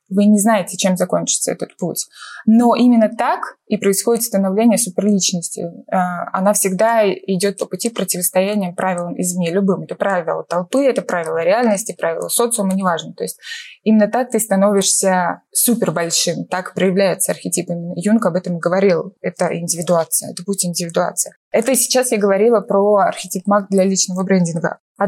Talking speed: 155 wpm